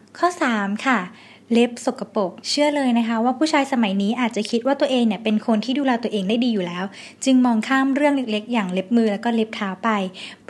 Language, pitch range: Thai, 210-255 Hz